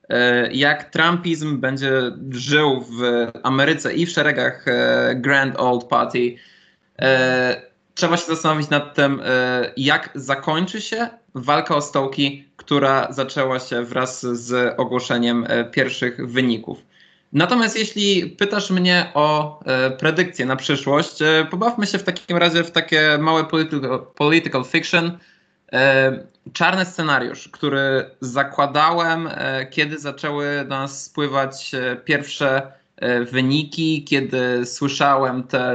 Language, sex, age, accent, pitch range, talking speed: Polish, male, 20-39, native, 130-155 Hz, 105 wpm